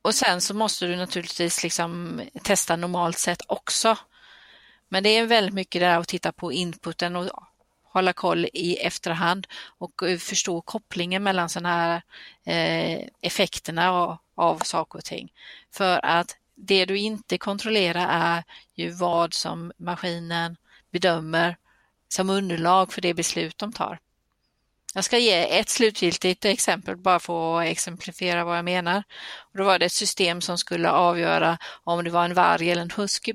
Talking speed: 155 wpm